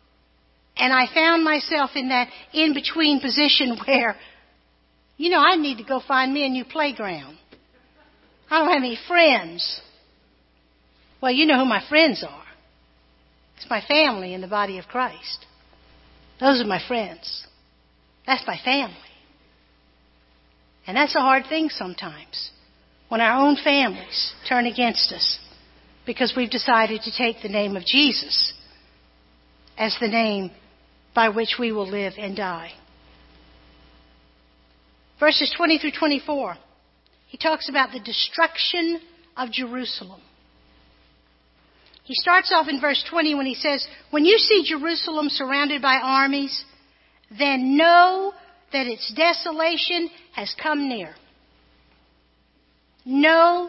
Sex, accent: female, American